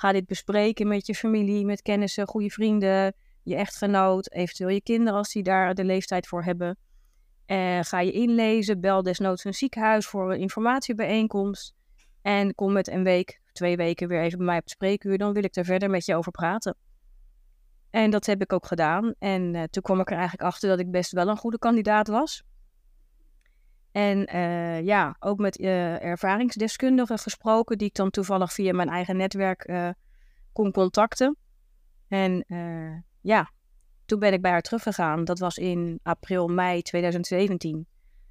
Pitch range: 180-205 Hz